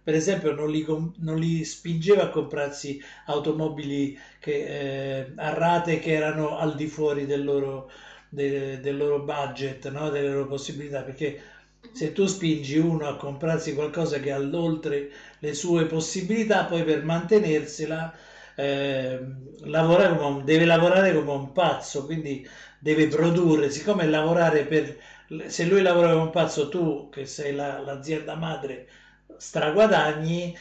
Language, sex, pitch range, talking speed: Italian, male, 140-170 Hz, 145 wpm